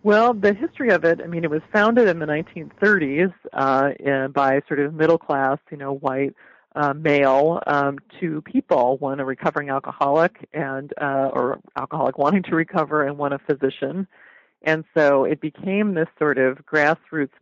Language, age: English, 40-59